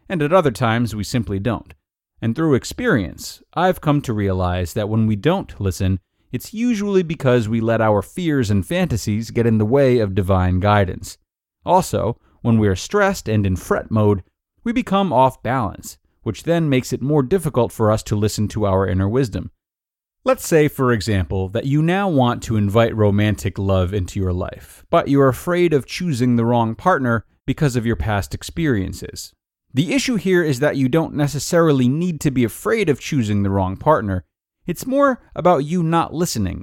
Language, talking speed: English, 185 wpm